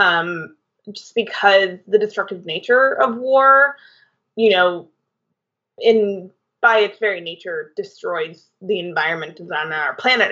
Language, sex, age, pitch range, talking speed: English, female, 20-39, 175-230 Hz, 120 wpm